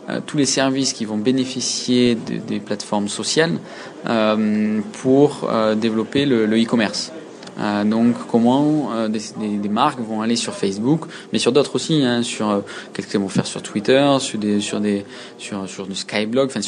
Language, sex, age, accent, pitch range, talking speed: French, male, 20-39, French, 105-125 Hz, 185 wpm